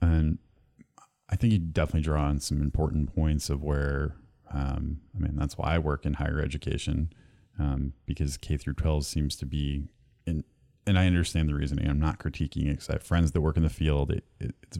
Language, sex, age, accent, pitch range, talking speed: English, male, 30-49, American, 75-90 Hz, 210 wpm